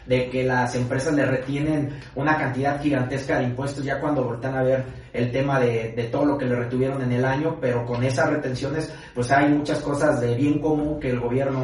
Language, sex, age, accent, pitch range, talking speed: Spanish, male, 30-49, Mexican, 125-150 Hz, 215 wpm